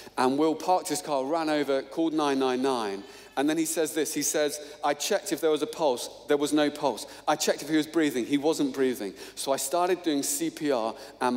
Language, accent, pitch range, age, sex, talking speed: English, British, 125-160 Hz, 40-59, male, 220 wpm